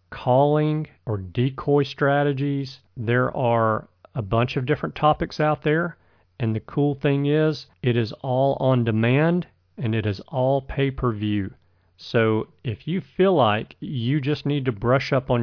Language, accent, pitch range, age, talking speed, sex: English, American, 115-145 Hz, 40-59, 155 wpm, male